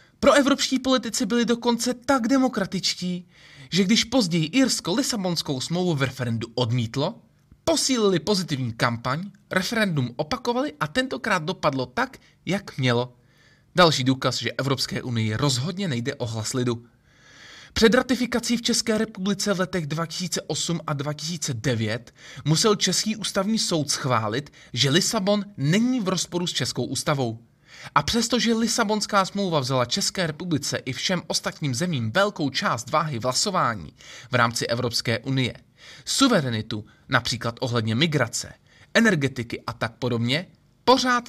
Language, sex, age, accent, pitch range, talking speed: Czech, male, 20-39, native, 130-205 Hz, 130 wpm